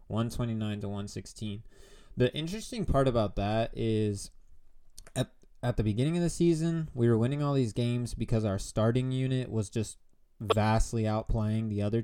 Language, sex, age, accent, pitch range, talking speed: English, male, 20-39, American, 105-125 Hz, 160 wpm